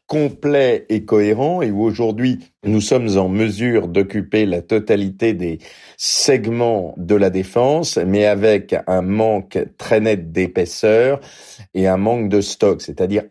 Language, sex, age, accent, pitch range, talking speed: French, male, 40-59, French, 90-105 Hz, 140 wpm